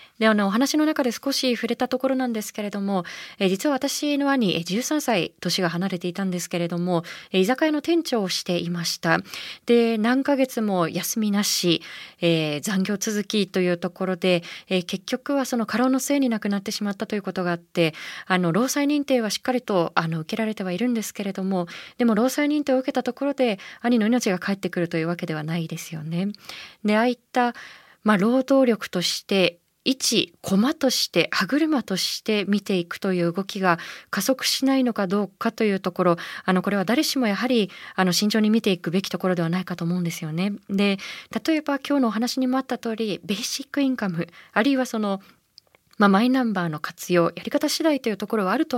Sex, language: female, Japanese